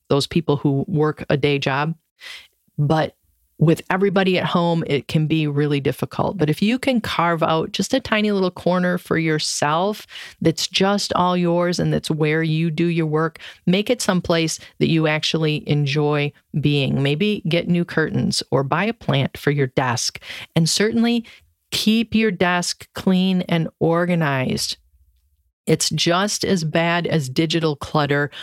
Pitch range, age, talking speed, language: 145-170 Hz, 40-59, 160 wpm, English